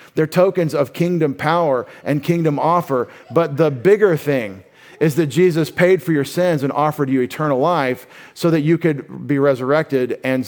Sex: male